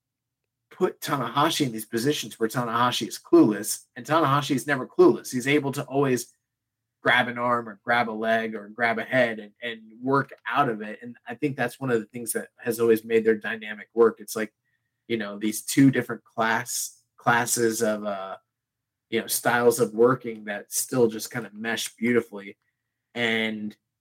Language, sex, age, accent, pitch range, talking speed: English, male, 30-49, American, 110-125 Hz, 185 wpm